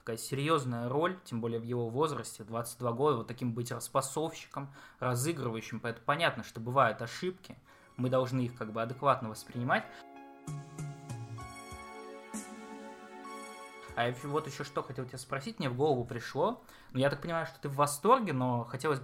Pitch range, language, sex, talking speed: 120-145 Hz, Russian, male, 155 wpm